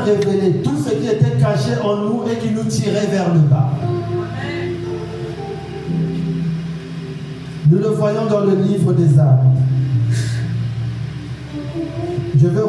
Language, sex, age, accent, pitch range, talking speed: French, male, 40-59, French, 135-185 Hz, 120 wpm